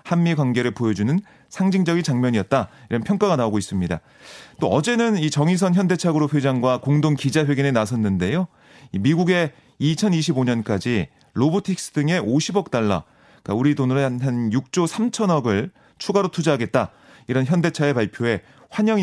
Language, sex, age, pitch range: Korean, male, 30-49, 120-175 Hz